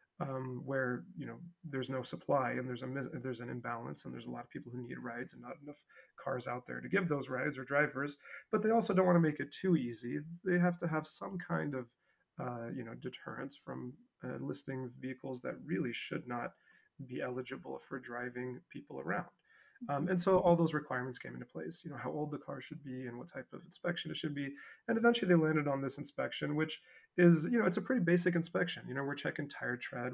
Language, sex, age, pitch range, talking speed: English, male, 30-49, 125-165 Hz, 230 wpm